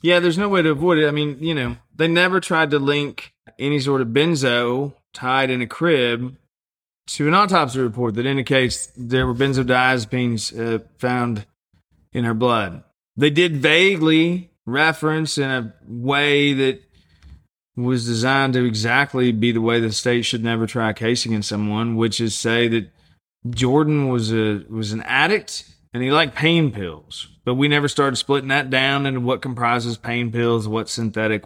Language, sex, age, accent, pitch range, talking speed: English, male, 20-39, American, 115-150 Hz, 175 wpm